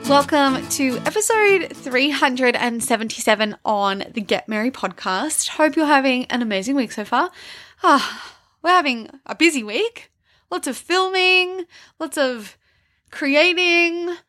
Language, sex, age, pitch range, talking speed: English, female, 20-39, 220-320 Hz, 120 wpm